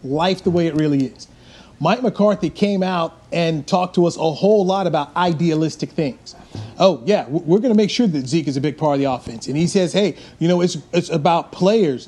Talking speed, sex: 230 wpm, male